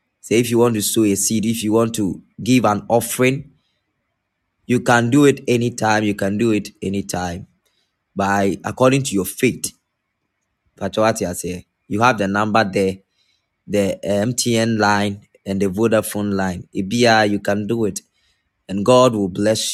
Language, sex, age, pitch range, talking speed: English, male, 20-39, 100-120 Hz, 155 wpm